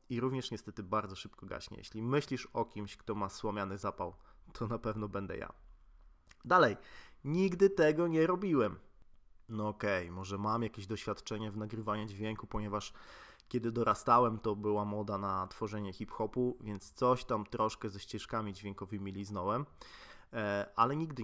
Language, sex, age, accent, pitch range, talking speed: Polish, male, 20-39, native, 100-120 Hz, 145 wpm